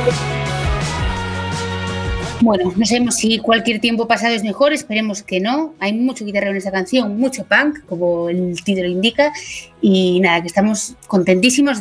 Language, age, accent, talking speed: Spanish, 20-39, Spanish, 145 wpm